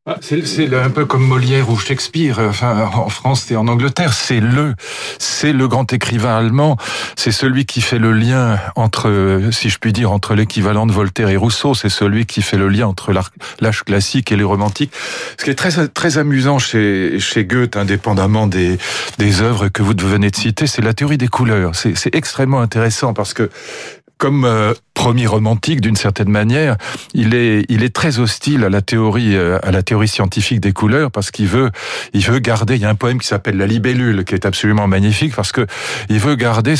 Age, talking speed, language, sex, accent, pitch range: 40-59, 205 wpm, French, male, French, 105-130 Hz